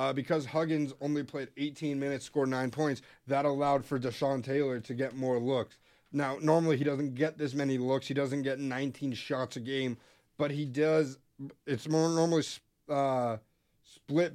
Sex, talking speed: male, 175 wpm